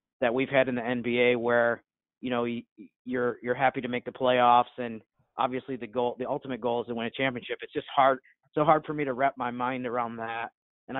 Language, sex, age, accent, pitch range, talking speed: English, male, 30-49, American, 120-150 Hz, 230 wpm